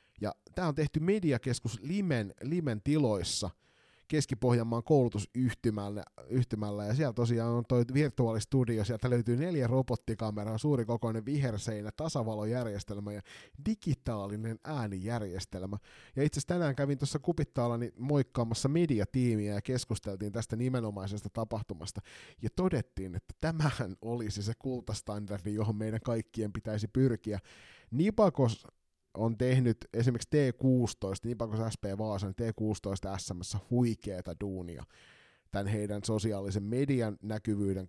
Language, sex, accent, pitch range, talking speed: Finnish, male, native, 100-125 Hz, 115 wpm